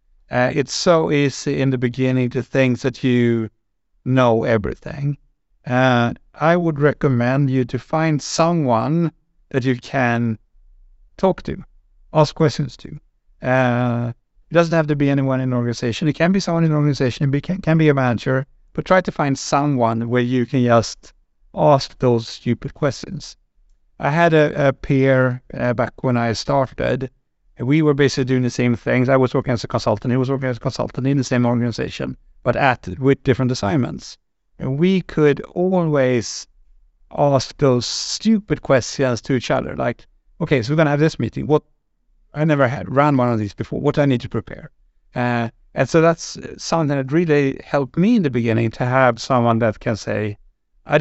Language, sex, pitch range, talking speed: English, male, 120-145 Hz, 185 wpm